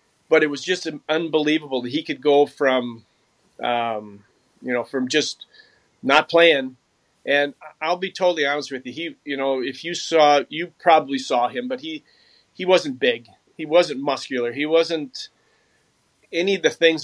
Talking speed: 170 wpm